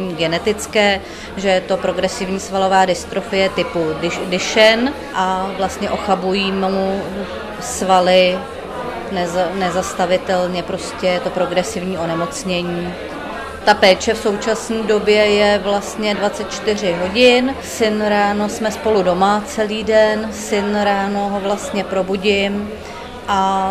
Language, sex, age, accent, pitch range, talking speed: Czech, female, 30-49, native, 185-205 Hz, 110 wpm